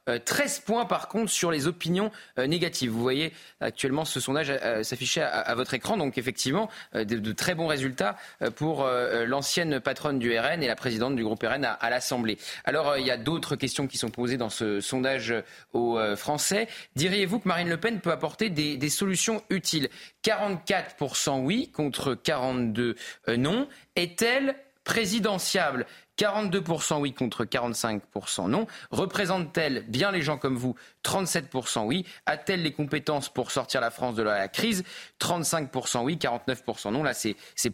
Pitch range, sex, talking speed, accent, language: 125-175 Hz, male, 155 wpm, French, French